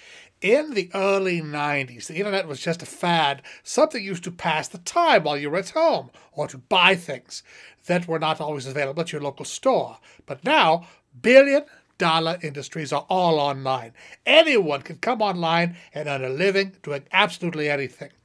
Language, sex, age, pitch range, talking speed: English, male, 60-79, 150-215 Hz, 170 wpm